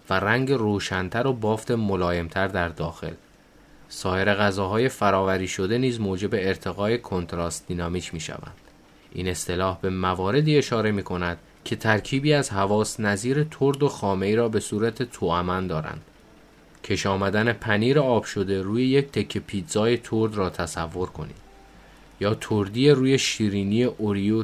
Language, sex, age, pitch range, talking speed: Persian, male, 30-49, 90-120 Hz, 135 wpm